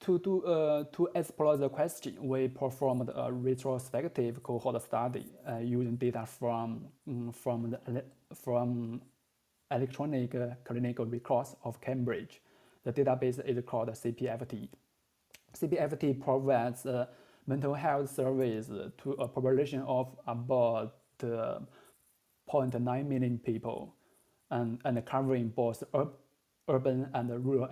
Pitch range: 120-135 Hz